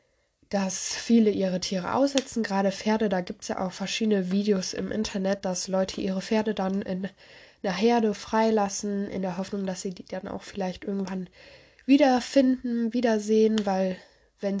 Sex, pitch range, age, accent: female, 185-225 Hz, 20-39, German